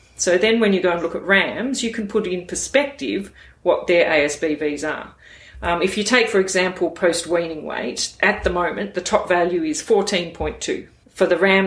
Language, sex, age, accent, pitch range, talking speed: English, female, 40-59, Australian, 175-235 Hz, 205 wpm